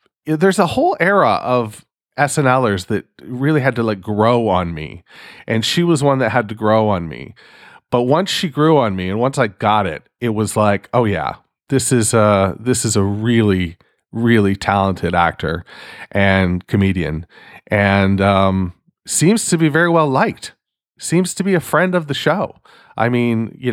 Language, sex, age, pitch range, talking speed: English, male, 40-59, 105-135 Hz, 180 wpm